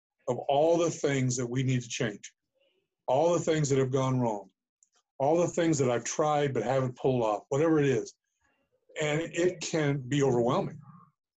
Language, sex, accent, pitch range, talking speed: English, male, American, 125-155 Hz, 180 wpm